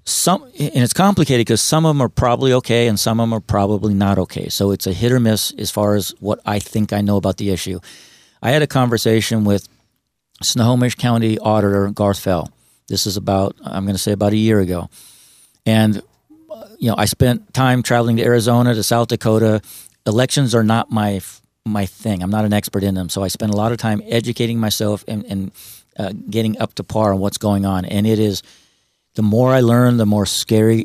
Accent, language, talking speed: American, English, 215 wpm